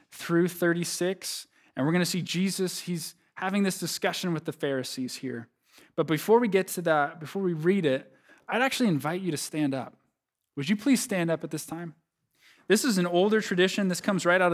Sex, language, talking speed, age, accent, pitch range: male, English, 210 wpm, 20-39, American, 140-185 Hz